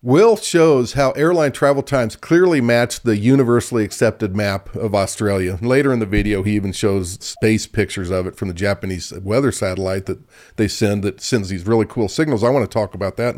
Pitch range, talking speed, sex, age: 110-150 Hz, 200 wpm, male, 40-59